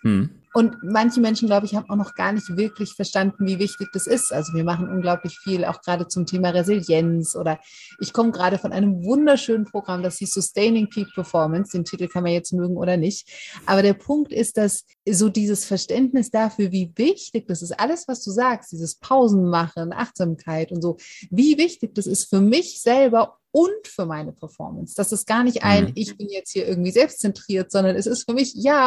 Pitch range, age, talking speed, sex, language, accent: 180-225 Hz, 30-49, 205 wpm, female, German, German